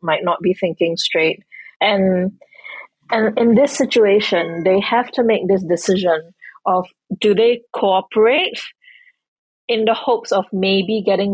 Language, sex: English, female